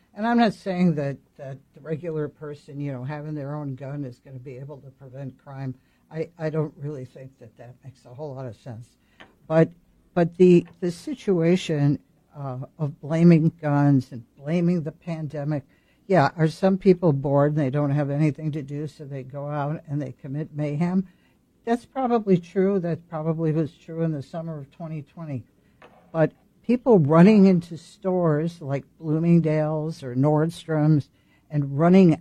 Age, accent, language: 60-79, American, English